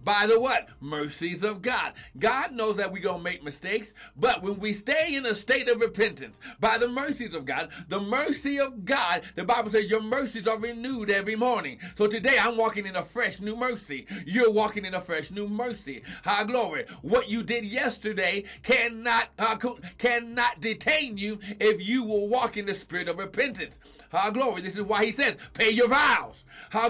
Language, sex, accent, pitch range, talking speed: English, male, American, 200-255 Hz, 195 wpm